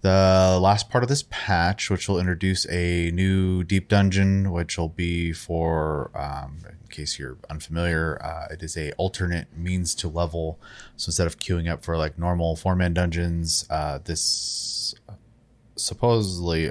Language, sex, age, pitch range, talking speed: English, male, 20-39, 80-95 Hz, 155 wpm